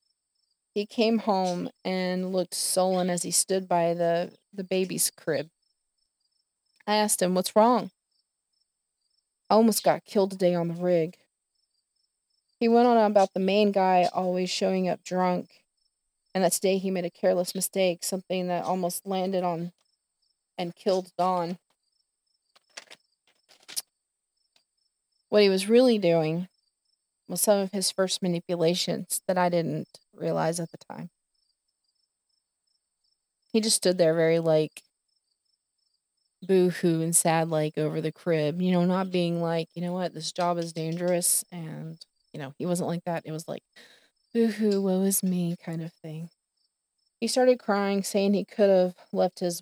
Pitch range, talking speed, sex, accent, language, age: 170-190 Hz, 150 wpm, female, American, English, 20-39